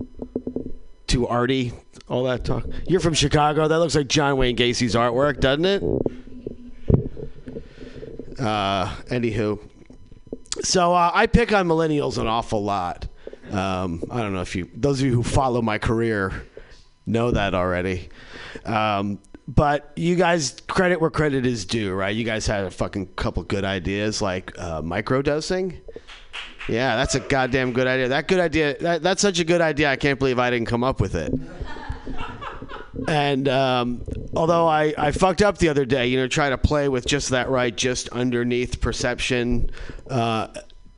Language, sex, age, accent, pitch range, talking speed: English, male, 40-59, American, 110-145 Hz, 165 wpm